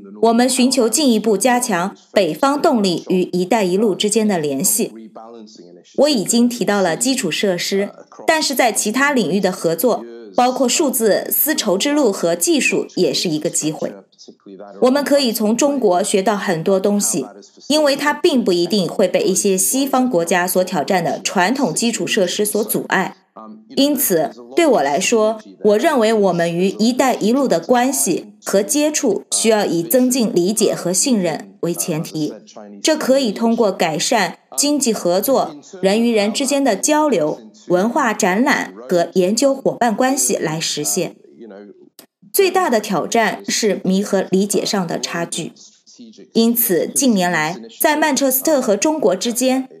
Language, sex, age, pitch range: English, female, 20-39, 185-255 Hz